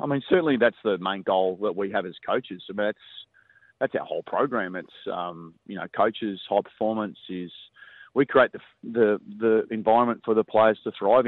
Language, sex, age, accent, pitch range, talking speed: English, male, 30-49, Australian, 95-110 Hz, 200 wpm